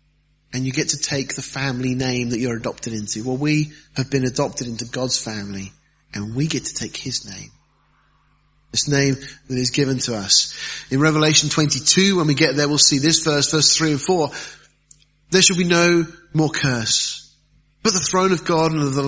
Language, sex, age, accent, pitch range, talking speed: English, male, 30-49, British, 145-185 Hz, 200 wpm